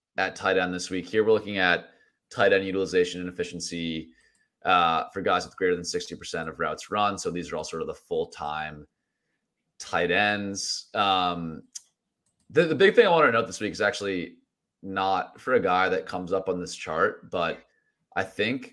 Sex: male